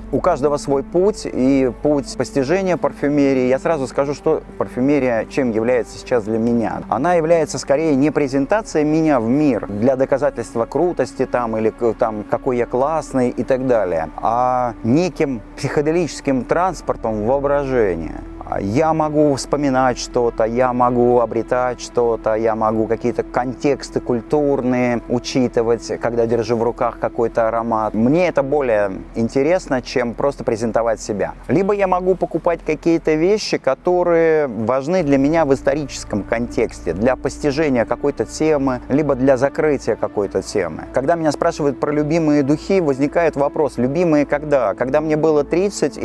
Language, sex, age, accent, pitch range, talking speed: Russian, male, 30-49, native, 120-150 Hz, 140 wpm